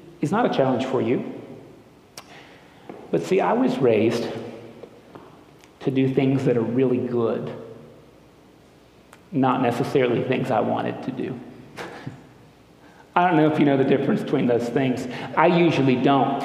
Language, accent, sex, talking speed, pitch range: English, American, male, 140 wpm, 120-160 Hz